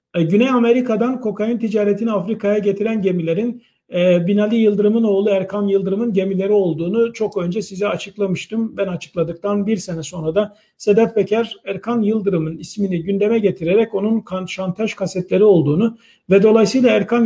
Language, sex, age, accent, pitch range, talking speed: Turkish, male, 50-69, native, 185-220 Hz, 130 wpm